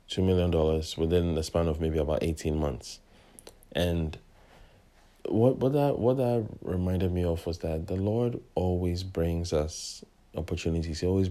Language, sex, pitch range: English, male, 85-100 Hz